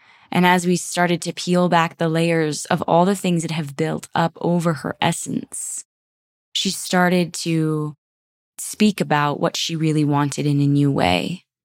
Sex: female